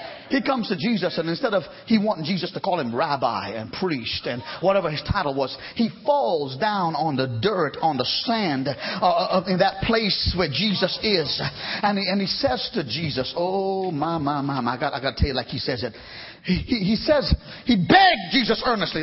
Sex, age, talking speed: male, 40-59, 215 wpm